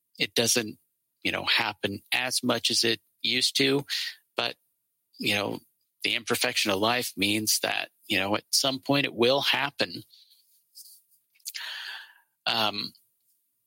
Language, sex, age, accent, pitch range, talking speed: English, male, 50-69, American, 110-125 Hz, 125 wpm